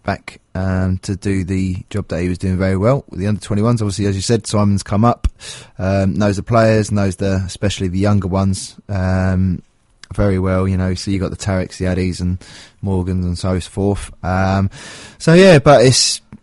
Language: English